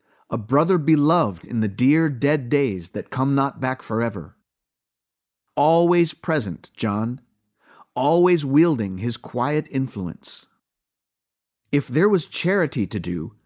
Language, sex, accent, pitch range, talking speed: English, male, American, 110-155 Hz, 120 wpm